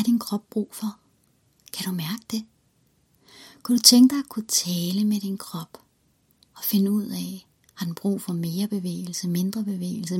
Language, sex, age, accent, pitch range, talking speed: Danish, female, 30-49, native, 190-220 Hz, 175 wpm